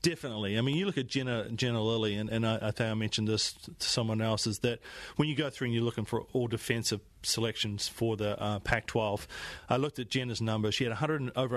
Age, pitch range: 40-59, 110-140 Hz